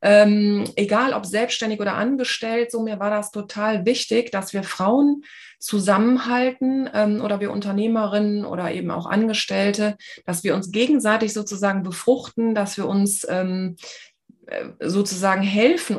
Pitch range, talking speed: 195-230 Hz, 135 wpm